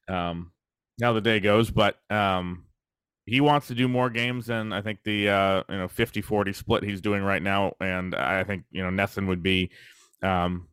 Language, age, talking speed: English, 30-49, 200 wpm